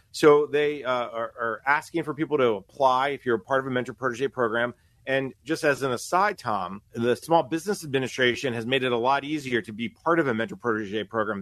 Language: English